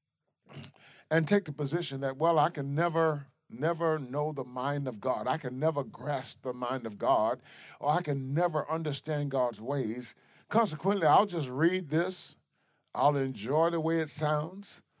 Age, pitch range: 40-59, 135-210 Hz